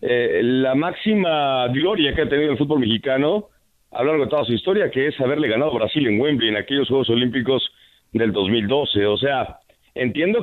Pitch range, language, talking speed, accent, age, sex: 130-165 Hz, English, 200 wpm, Mexican, 50-69, male